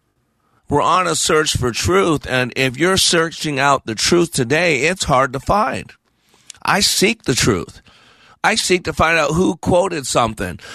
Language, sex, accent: English, male, American